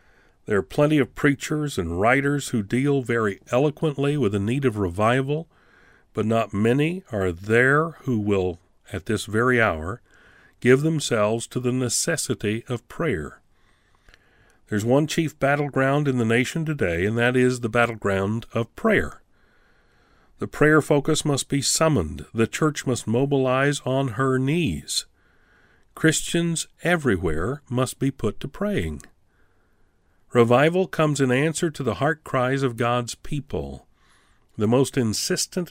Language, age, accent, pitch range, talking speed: English, 50-69, American, 100-145 Hz, 140 wpm